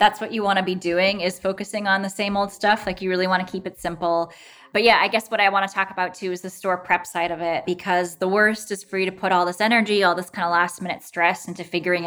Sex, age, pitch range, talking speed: female, 20-39, 170-195 Hz, 300 wpm